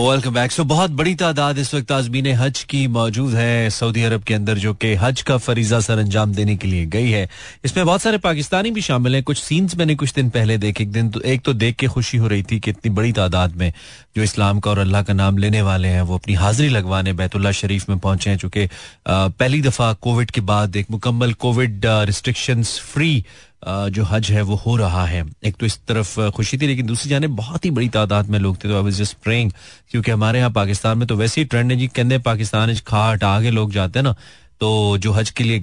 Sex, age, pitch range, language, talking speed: male, 30-49, 100-135 Hz, Hindi, 235 wpm